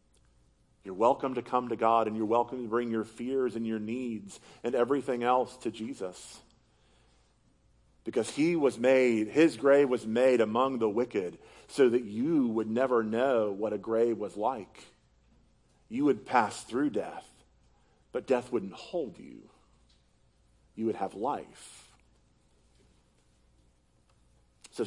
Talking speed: 140 wpm